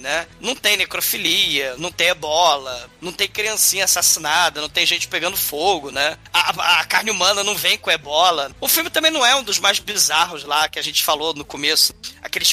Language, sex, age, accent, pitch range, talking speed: Portuguese, male, 20-39, Brazilian, 150-190 Hz, 205 wpm